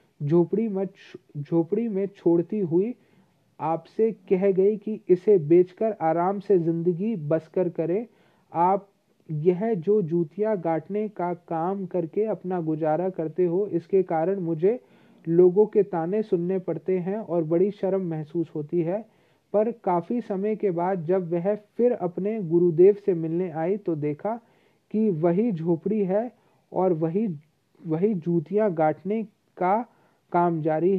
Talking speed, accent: 135 wpm, native